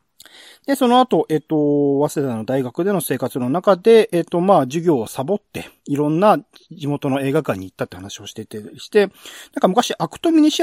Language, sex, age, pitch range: Japanese, male, 40-59, 135-200 Hz